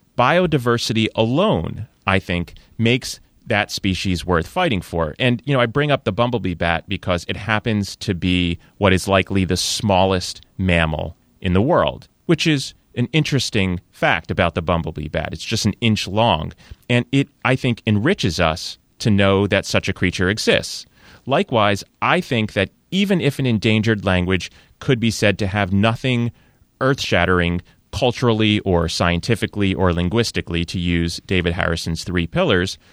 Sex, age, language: male, 30-49, English